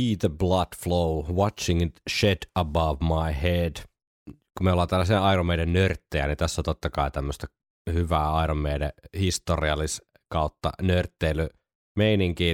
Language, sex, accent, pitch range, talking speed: Finnish, male, native, 75-90 Hz, 135 wpm